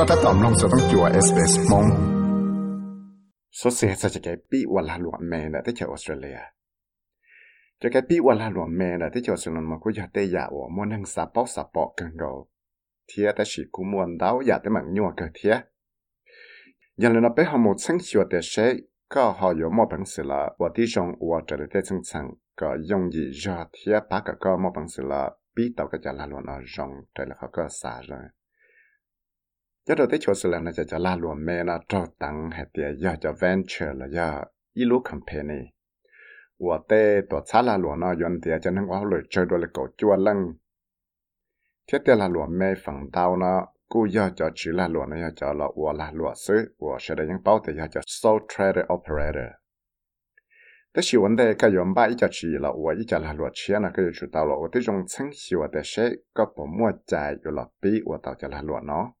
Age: 60-79